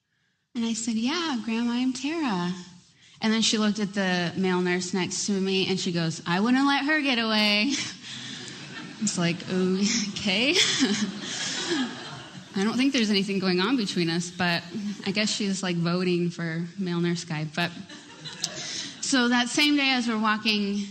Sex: female